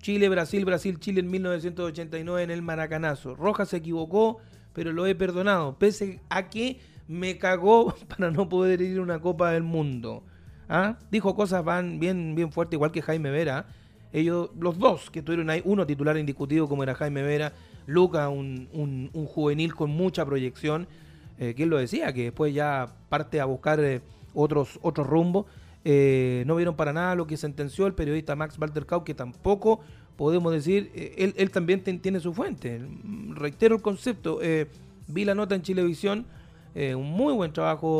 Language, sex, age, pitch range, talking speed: Spanish, male, 30-49, 135-180 Hz, 180 wpm